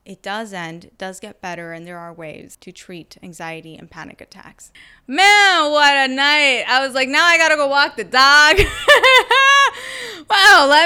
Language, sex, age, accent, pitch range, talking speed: English, female, 20-39, American, 195-270 Hz, 190 wpm